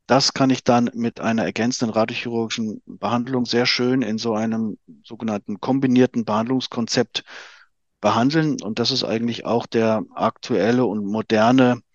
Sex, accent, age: male, German, 50-69